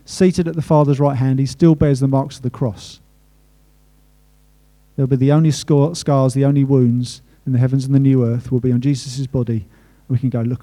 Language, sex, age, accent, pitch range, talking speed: English, male, 40-59, British, 135-175 Hz, 215 wpm